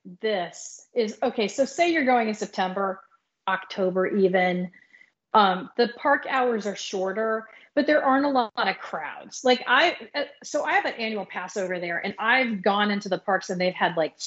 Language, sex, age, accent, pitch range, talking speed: English, female, 40-59, American, 185-240 Hz, 185 wpm